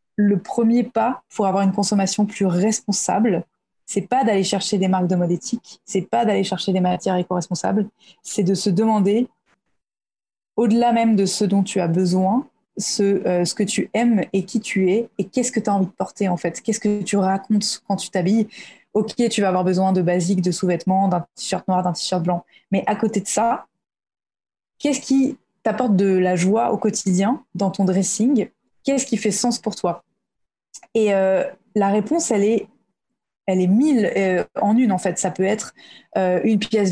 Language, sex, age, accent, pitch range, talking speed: French, female, 20-39, French, 185-220 Hz, 200 wpm